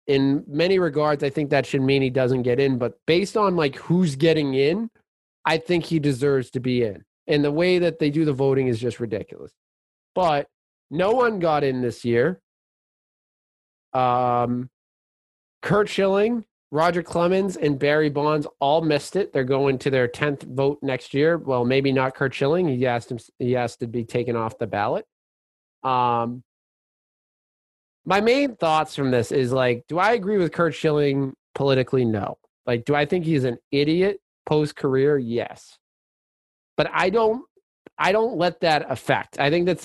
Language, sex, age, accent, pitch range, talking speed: English, male, 20-39, American, 130-165 Hz, 175 wpm